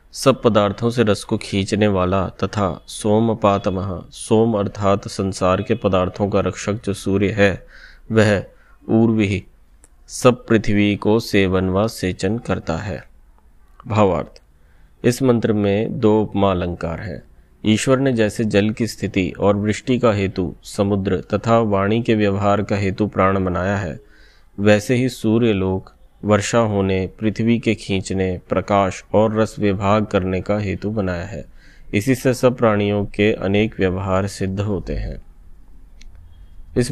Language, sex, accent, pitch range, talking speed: Hindi, male, native, 95-110 Hz, 140 wpm